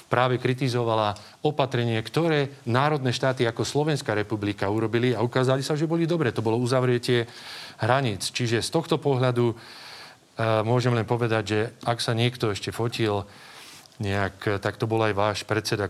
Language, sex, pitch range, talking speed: Slovak, male, 110-140 Hz, 155 wpm